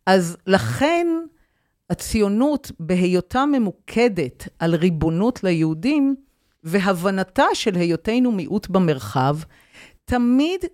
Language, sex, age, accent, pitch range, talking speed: Hebrew, female, 50-69, native, 175-235 Hz, 80 wpm